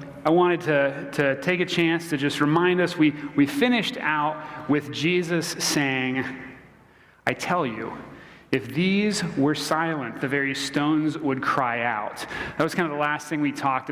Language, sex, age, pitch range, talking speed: English, male, 30-49, 135-160 Hz, 175 wpm